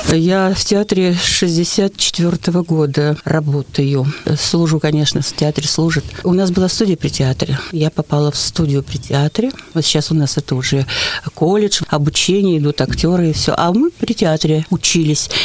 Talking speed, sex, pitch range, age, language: 155 wpm, female, 155-200 Hz, 50-69, Russian